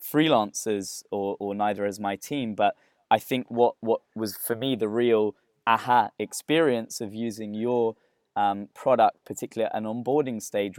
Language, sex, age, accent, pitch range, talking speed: English, male, 20-39, British, 105-125 Hz, 155 wpm